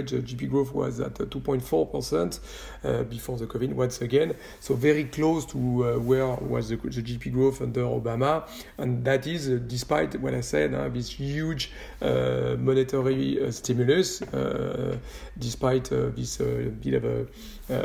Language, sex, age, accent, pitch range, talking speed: French, male, 40-59, French, 120-135 Hz, 170 wpm